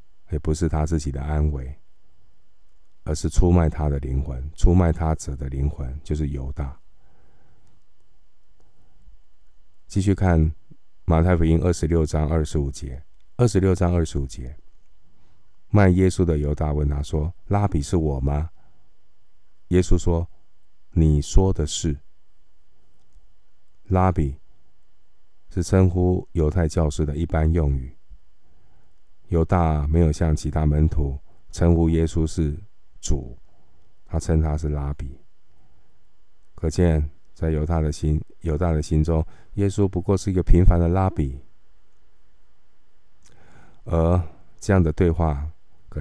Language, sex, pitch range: Chinese, male, 75-90 Hz